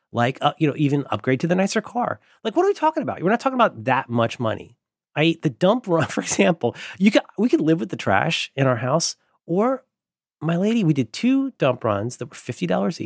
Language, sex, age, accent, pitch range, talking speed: English, male, 30-49, American, 120-170 Hz, 235 wpm